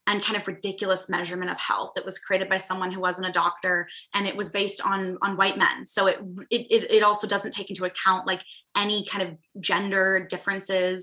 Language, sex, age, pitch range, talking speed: English, female, 10-29, 185-230 Hz, 210 wpm